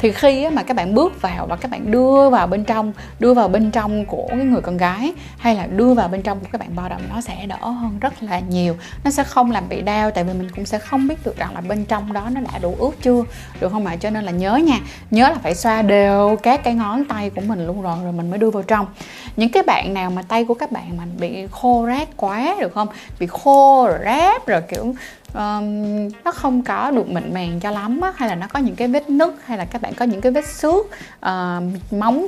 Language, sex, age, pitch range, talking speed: Vietnamese, female, 20-39, 195-250 Hz, 260 wpm